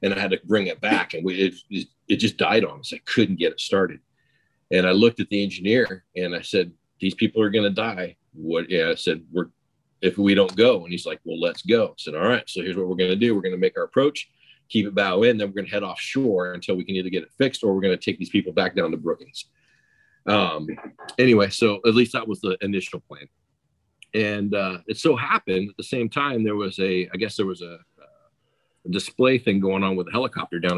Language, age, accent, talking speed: English, 40-59, American, 255 wpm